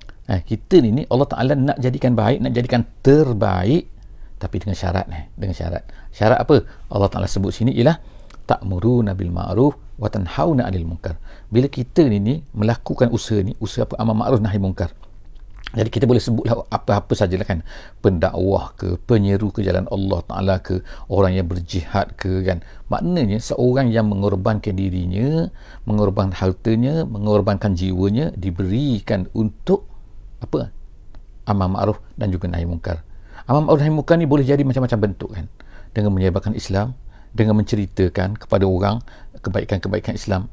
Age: 50-69